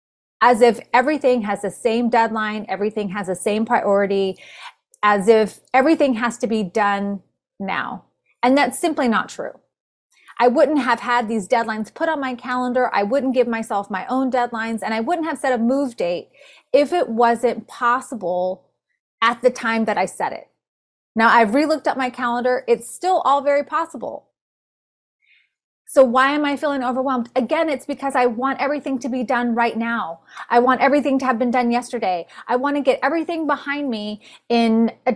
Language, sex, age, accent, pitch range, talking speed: English, female, 30-49, American, 225-280 Hz, 180 wpm